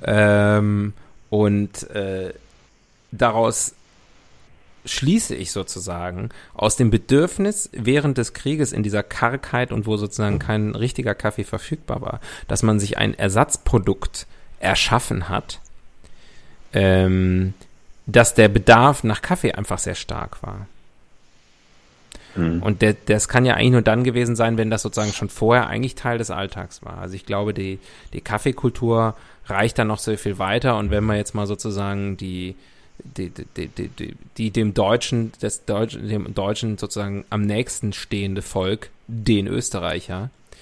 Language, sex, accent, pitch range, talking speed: German, male, German, 100-115 Hz, 145 wpm